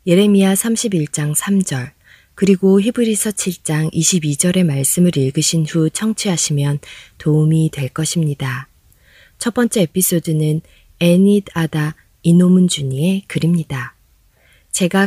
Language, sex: Korean, female